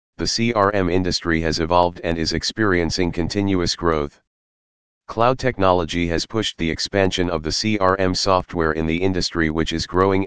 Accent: American